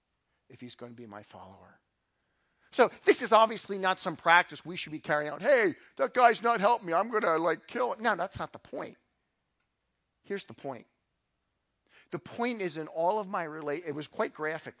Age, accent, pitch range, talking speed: 50-69, American, 130-215 Hz, 205 wpm